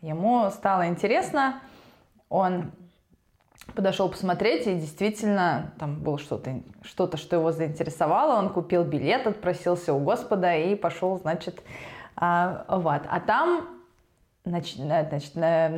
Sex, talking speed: female, 110 wpm